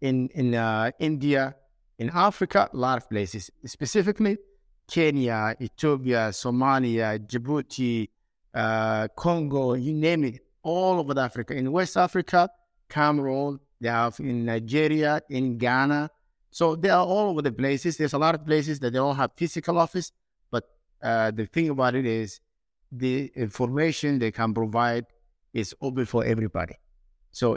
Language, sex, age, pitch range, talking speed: English, male, 50-69, 120-155 Hz, 150 wpm